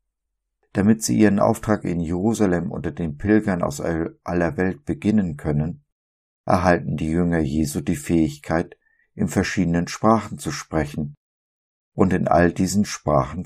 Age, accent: 50-69, German